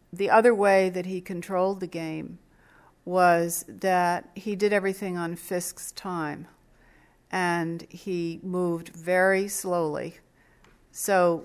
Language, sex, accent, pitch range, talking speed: English, female, American, 170-200 Hz, 115 wpm